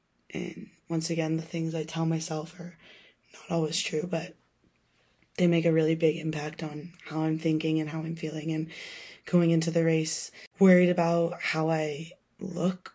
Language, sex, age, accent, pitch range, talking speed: English, female, 20-39, American, 160-170 Hz, 170 wpm